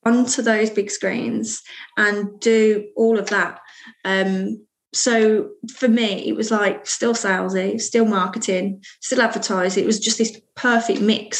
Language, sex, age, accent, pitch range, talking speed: English, female, 20-39, British, 195-225 Hz, 145 wpm